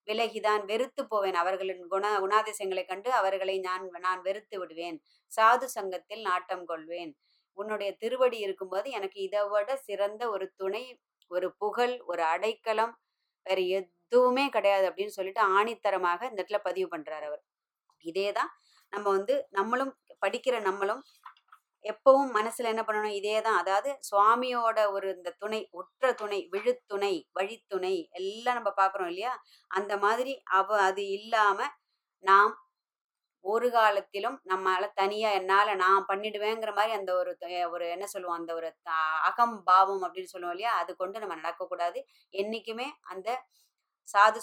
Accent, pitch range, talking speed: native, 185-225 Hz, 130 wpm